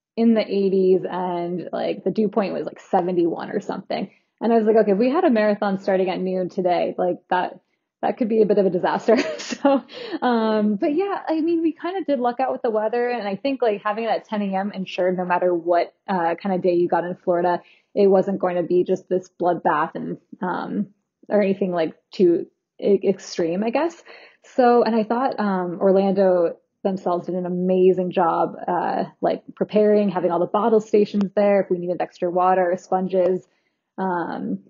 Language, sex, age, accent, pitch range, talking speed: English, female, 20-39, American, 180-215 Hz, 205 wpm